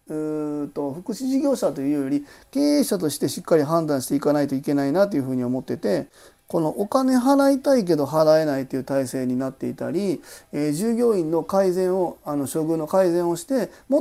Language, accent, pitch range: Japanese, native, 150-215 Hz